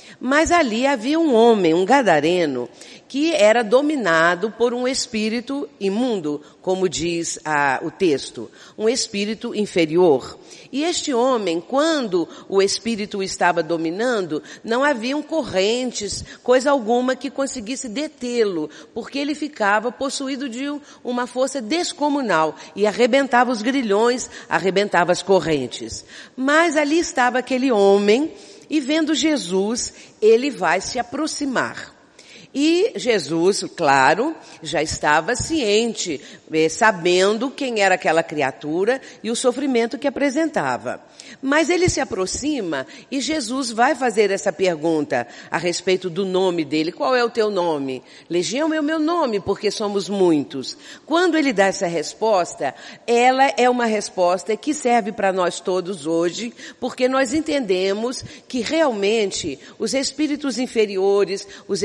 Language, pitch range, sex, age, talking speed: Portuguese, 190-275 Hz, female, 50-69, 130 wpm